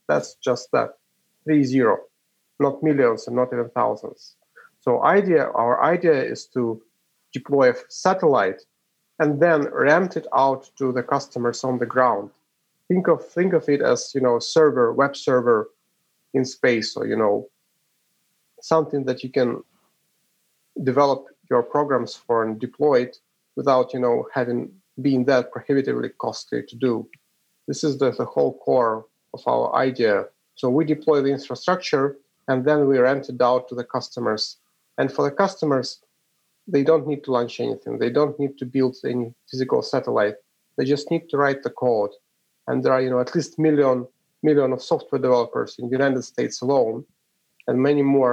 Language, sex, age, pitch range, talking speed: English, male, 40-59, 125-155 Hz, 170 wpm